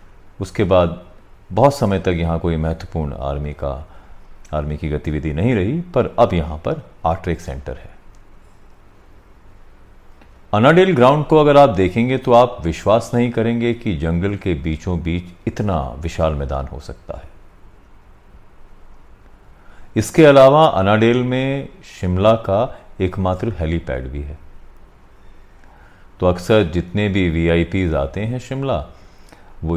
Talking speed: 125 wpm